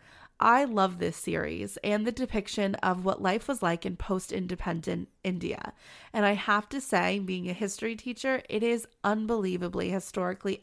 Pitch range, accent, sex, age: 190-240 Hz, American, female, 20-39